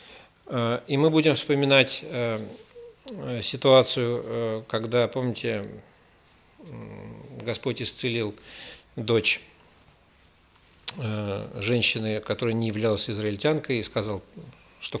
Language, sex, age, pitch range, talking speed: Russian, male, 50-69, 110-130 Hz, 70 wpm